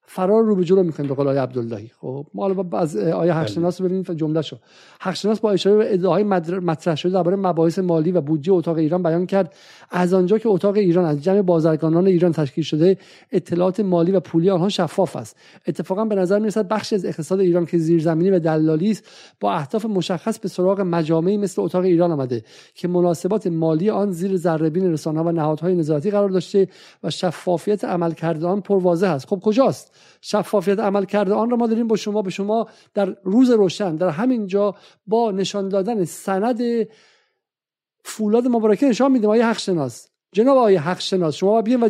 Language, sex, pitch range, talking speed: Persian, male, 175-220 Hz, 175 wpm